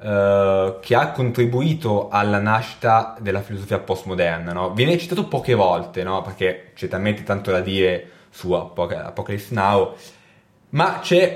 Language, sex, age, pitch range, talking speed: Italian, male, 20-39, 95-140 Hz, 130 wpm